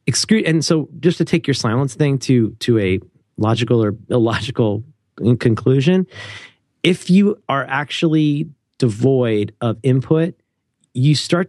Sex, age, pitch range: male, 30-49, 115-155 Hz